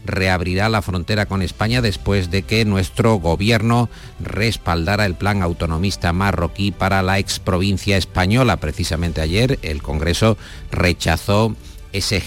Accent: Spanish